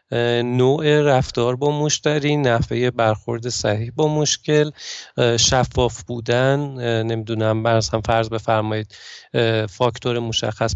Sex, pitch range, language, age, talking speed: male, 115-150 Hz, Persian, 40-59, 105 wpm